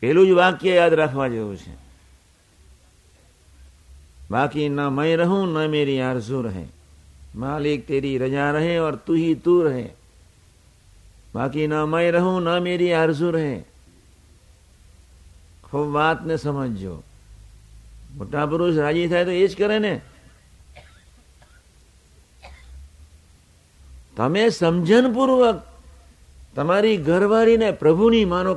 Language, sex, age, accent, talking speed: Gujarati, male, 60-79, native, 95 wpm